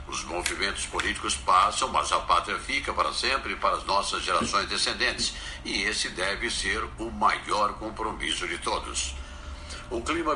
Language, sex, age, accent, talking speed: Portuguese, male, 60-79, Brazilian, 150 wpm